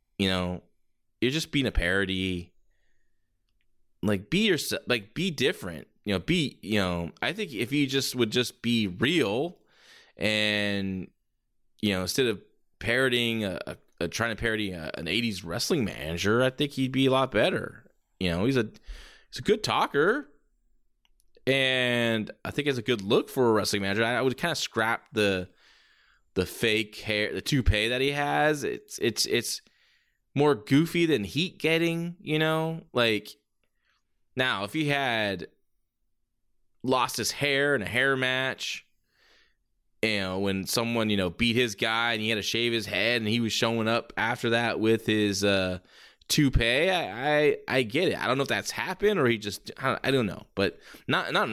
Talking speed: 180 wpm